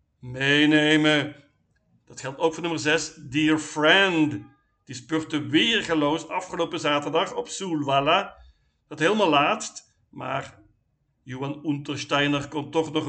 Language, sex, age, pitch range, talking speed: Dutch, male, 50-69, 140-170 Hz, 115 wpm